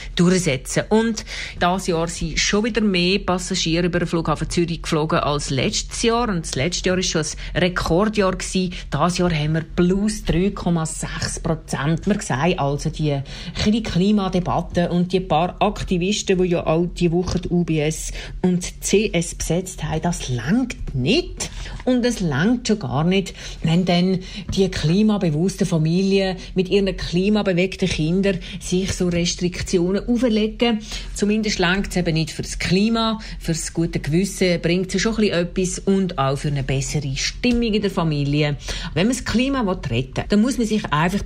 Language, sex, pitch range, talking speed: German, female, 160-200 Hz, 160 wpm